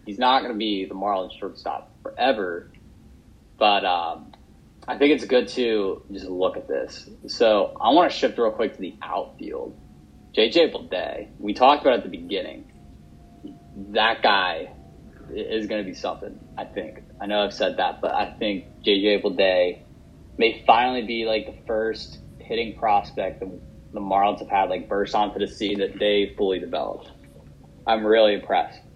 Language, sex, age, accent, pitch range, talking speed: English, male, 20-39, American, 95-115 Hz, 170 wpm